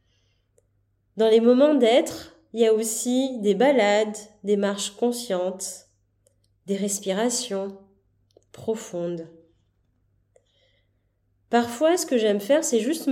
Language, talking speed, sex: French, 105 wpm, female